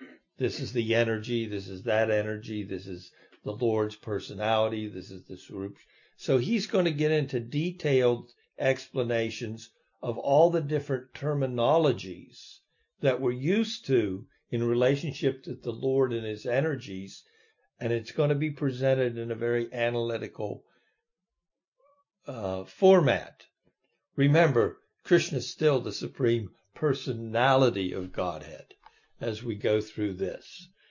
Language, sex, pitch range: English, male, 110-140 Hz